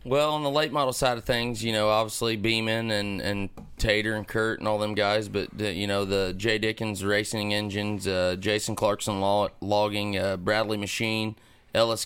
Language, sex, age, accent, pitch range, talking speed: English, male, 30-49, American, 100-110 Hz, 195 wpm